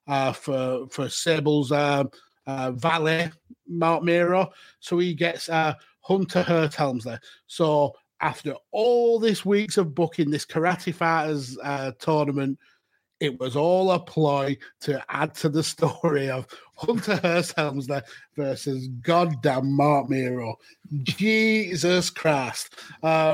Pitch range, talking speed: 140-170 Hz, 125 wpm